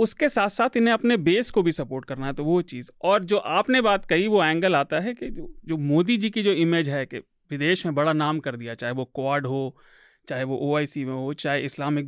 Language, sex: Hindi, male